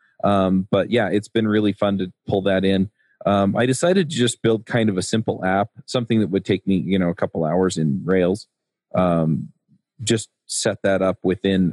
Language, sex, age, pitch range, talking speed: English, male, 30-49, 90-105 Hz, 205 wpm